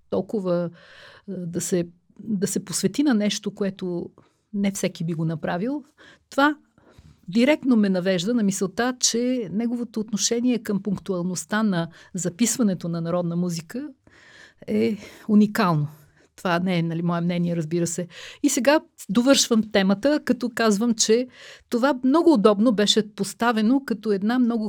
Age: 50-69